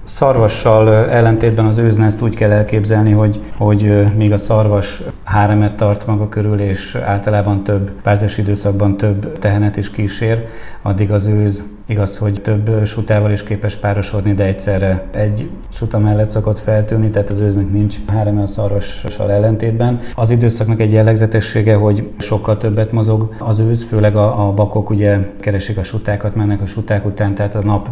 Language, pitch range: Hungarian, 100-105 Hz